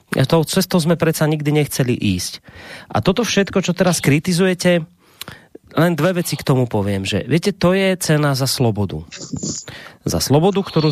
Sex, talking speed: male, 160 wpm